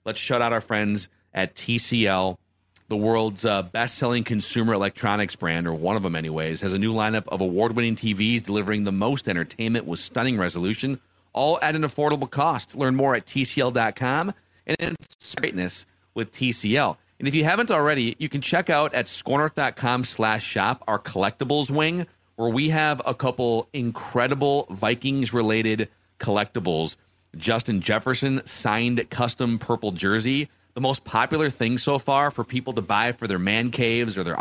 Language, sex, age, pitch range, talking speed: English, male, 40-59, 100-130 Hz, 160 wpm